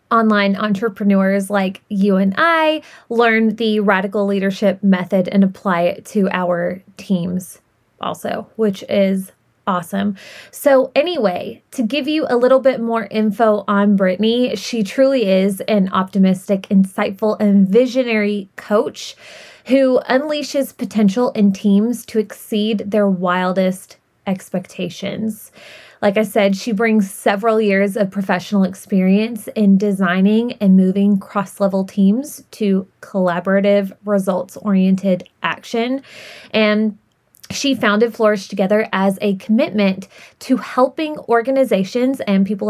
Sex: female